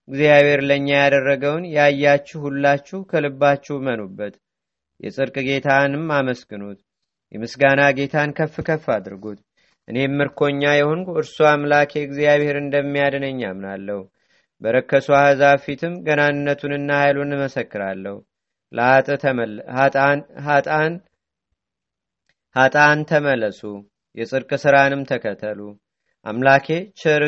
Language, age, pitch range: Amharic, 30-49, 135-150 Hz